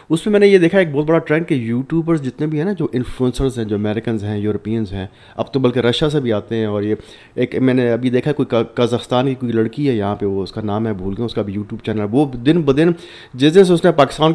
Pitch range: 110-150 Hz